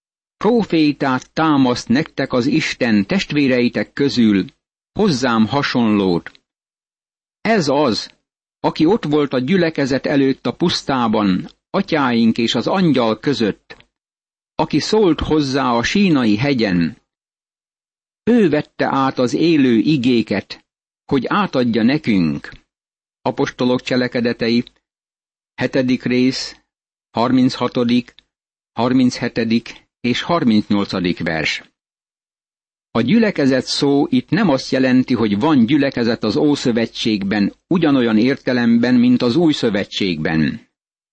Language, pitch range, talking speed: Hungarian, 120-150 Hz, 95 wpm